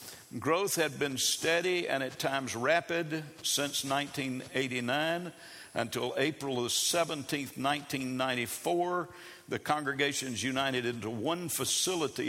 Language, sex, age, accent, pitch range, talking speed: English, male, 60-79, American, 125-150 Hz, 105 wpm